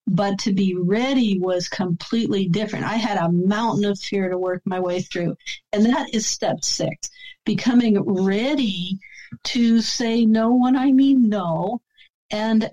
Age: 50-69